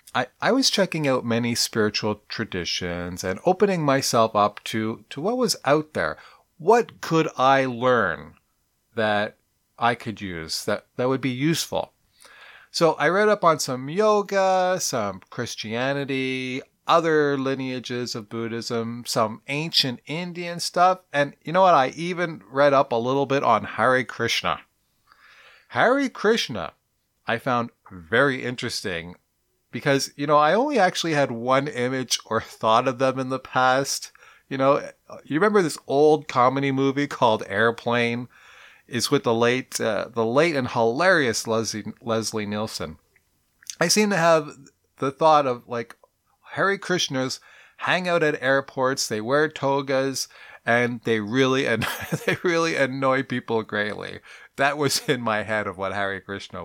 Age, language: 30-49, English